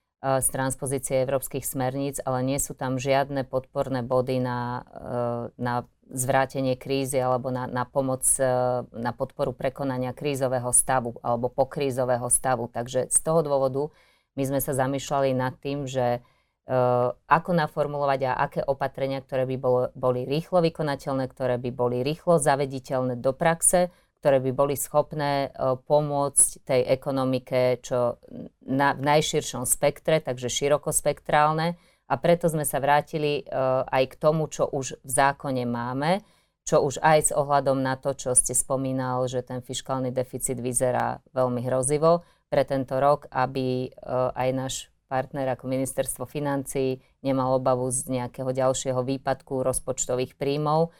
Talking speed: 140 wpm